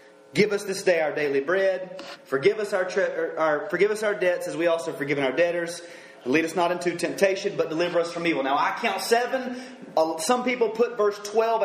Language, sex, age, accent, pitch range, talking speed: English, male, 30-49, American, 170-215 Hz, 195 wpm